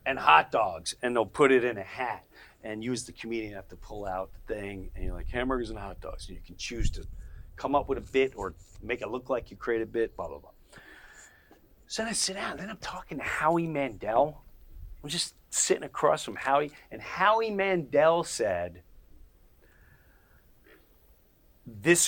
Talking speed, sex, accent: 205 wpm, male, American